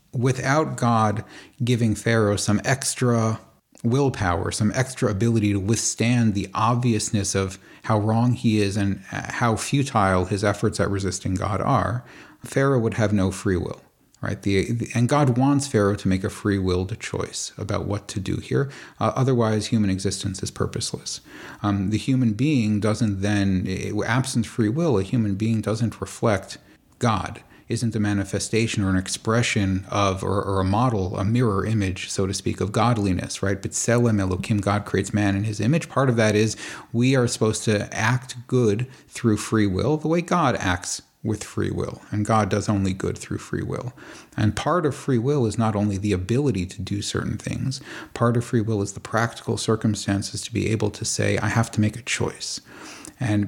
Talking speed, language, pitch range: 185 wpm, English, 100-120 Hz